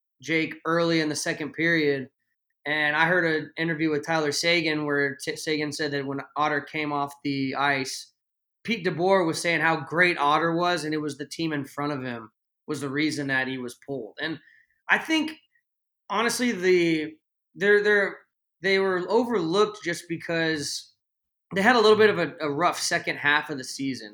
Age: 20-39